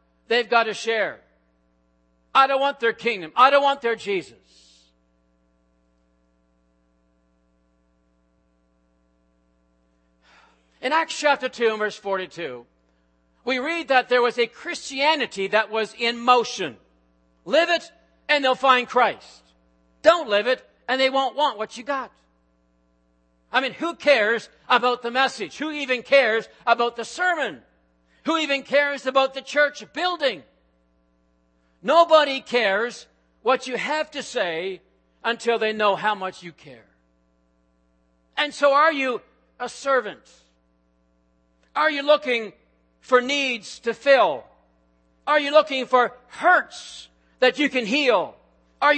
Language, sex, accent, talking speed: English, male, American, 125 wpm